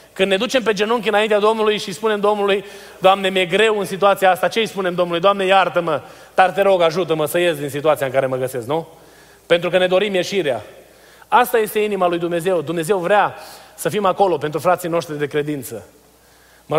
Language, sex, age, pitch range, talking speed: Romanian, male, 30-49, 155-200 Hz, 200 wpm